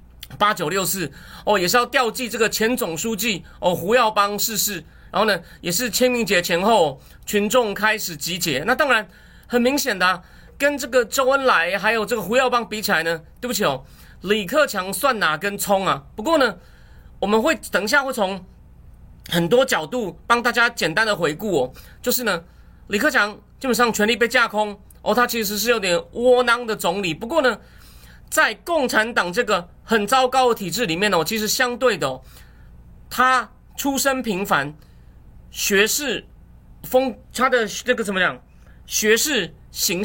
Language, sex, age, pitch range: Chinese, male, 30-49, 175-245 Hz